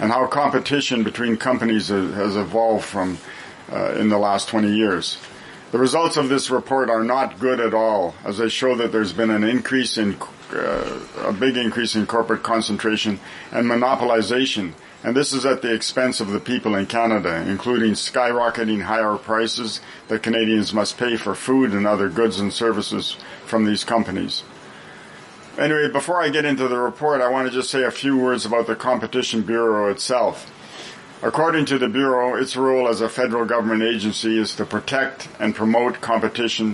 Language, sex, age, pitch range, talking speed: English, male, 50-69, 110-125 Hz, 175 wpm